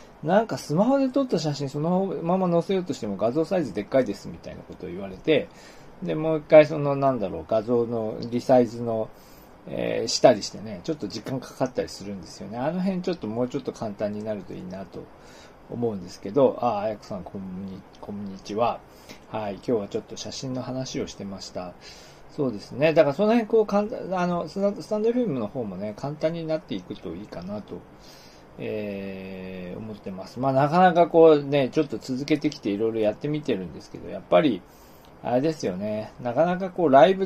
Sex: male